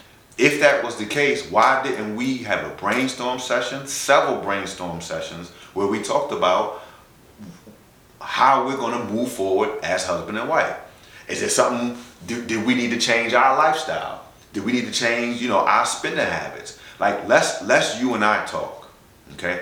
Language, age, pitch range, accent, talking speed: English, 30-49, 100-130 Hz, American, 170 wpm